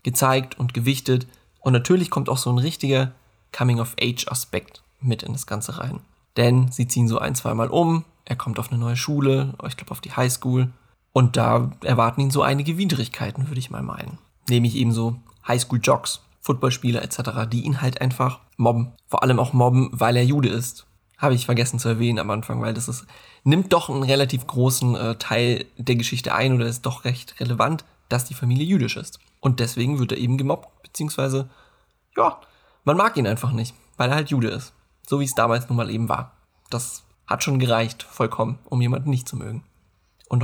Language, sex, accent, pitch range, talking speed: German, male, German, 120-135 Hz, 195 wpm